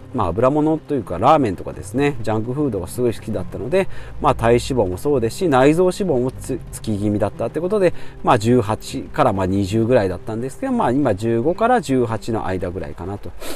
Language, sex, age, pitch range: Japanese, male, 40-59, 105-155 Hz